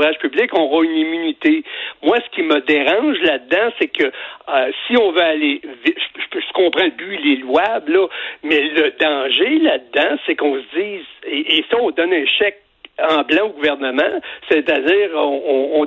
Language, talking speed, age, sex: French, 185 wpm, 60-79, male